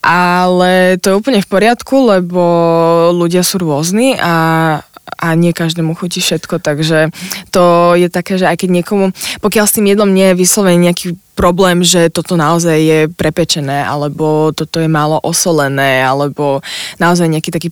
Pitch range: 160-190 Hz